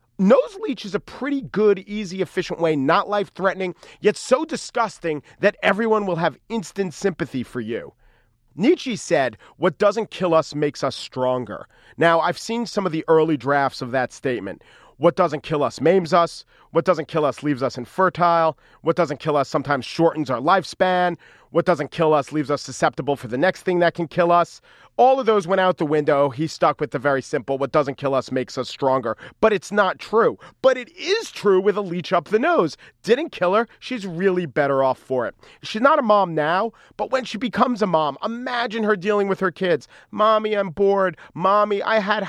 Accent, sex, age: American, male, 40-59